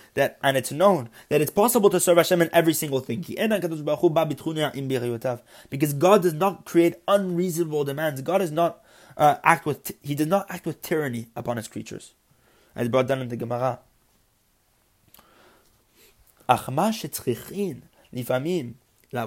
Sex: male